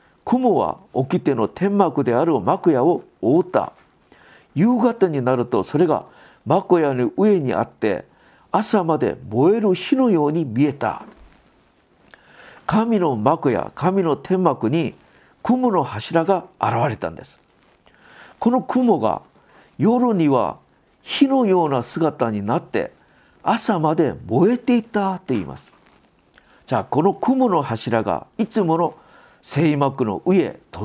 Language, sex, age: Japanese, male, 50-69